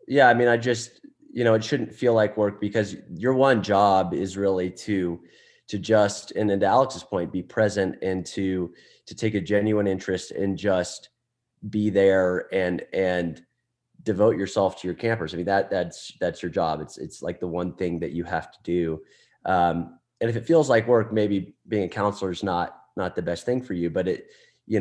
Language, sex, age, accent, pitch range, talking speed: English, male, 30-49, American, 90-110 Hz, 210 wpm